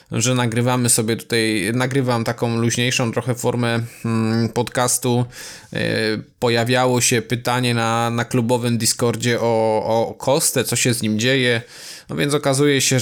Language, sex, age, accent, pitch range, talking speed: Polish, male, 20-39, native, 115-130 Hz, 135 wpm